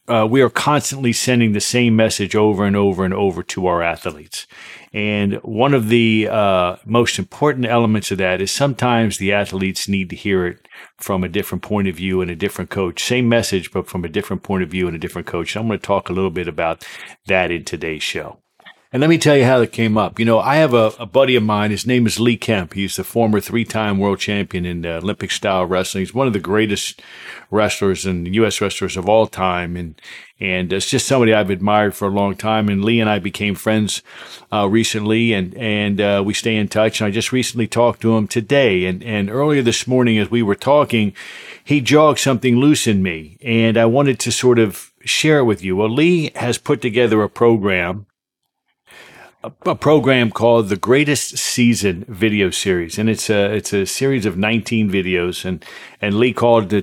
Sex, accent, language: male, American, English